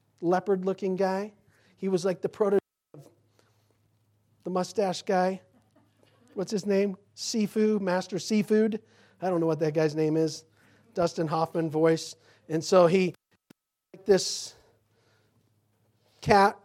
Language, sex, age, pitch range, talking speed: English, male, 40-59, 160-220 Hz, 125 wpm